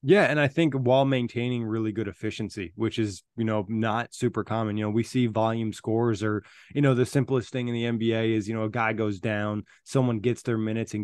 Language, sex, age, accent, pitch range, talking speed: English, male, 20-39, American, 110-130 Hz, 235 wpm